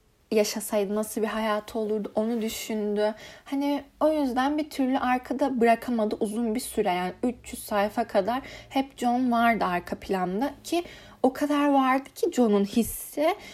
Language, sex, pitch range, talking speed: Turkish, female, 210-270 Hz, 145 wpm